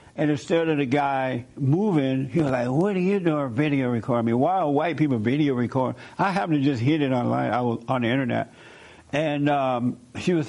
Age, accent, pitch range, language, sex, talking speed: 60-79, American, 125-150 Hz, English, male, 215 wpm